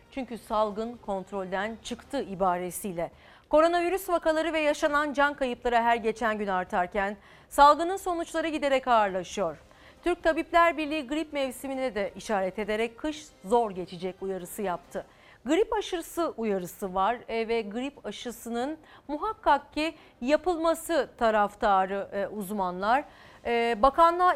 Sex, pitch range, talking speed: female, 210-290 Hz, 110 wpm